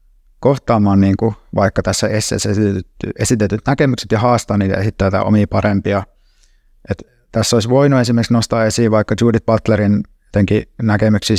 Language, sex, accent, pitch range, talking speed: Finnish, male, native, 95-110 Hz, 135 wpm